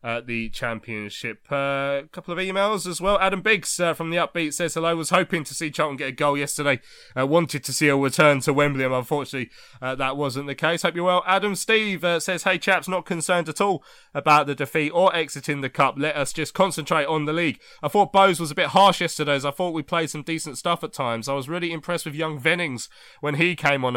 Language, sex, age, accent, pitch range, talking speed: English, male, 20-39, British, 135-170 Hz, 245 wpm